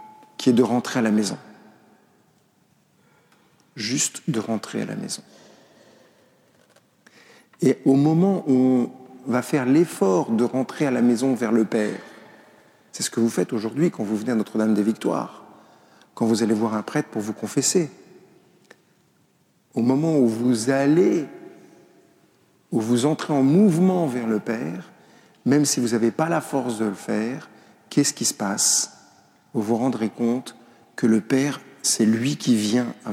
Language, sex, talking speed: French, male, 165 wpm